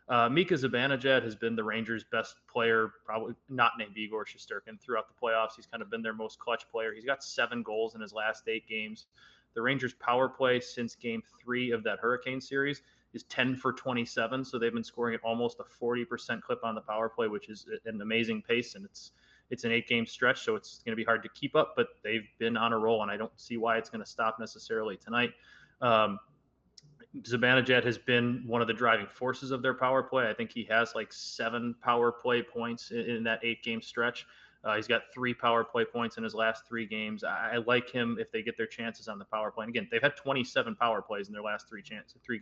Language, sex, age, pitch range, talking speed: English, male, 20-39, 110-125 Hz, 235 wpm